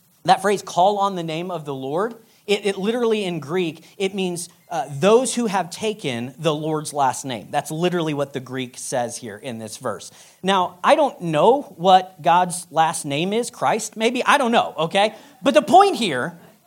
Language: English